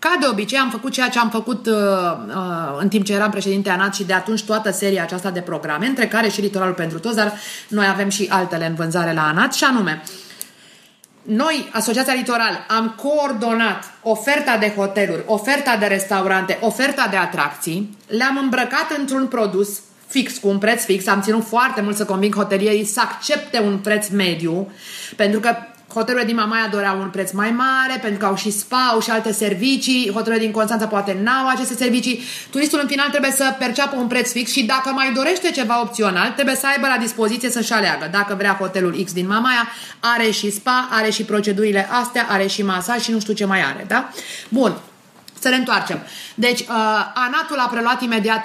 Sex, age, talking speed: female, 30-49, 195 wpm